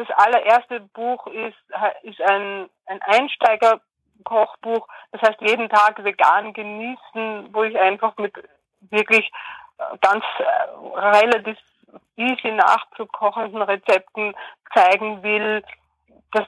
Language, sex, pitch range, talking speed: German, female, 200-230 Hz, 95 wpm